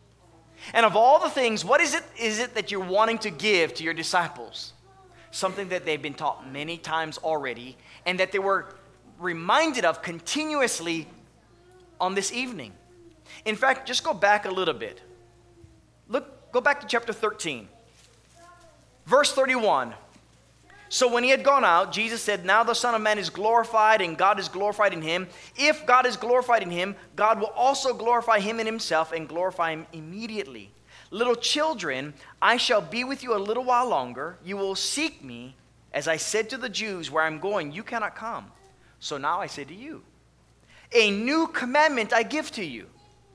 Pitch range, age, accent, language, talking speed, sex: 160-240 Hz, 20-39, American, English, 180 wpm, male